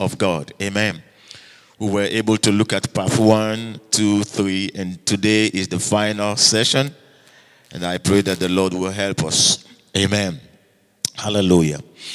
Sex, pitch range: male, 100-130 Hz